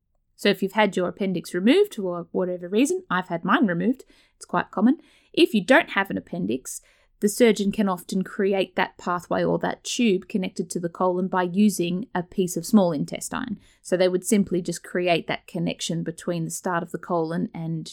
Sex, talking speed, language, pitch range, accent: female, 200 wpm, English, 175-225 Hz, Australian